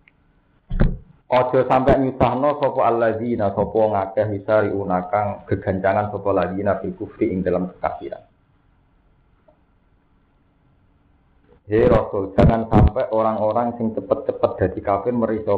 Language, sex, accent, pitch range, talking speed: Indonesian, male, native, 100-120 Hz, 105 wpm